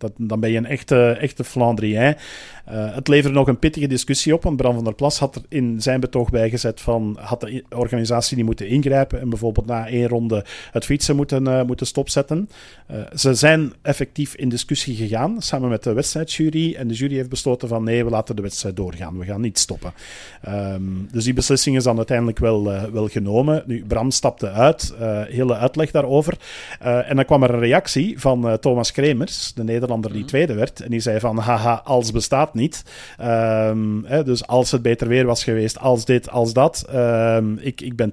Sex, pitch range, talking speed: male, 110-130 Hz, 205 wpm